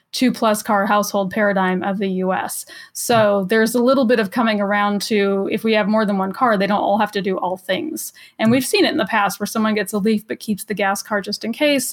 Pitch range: 195-235 Hz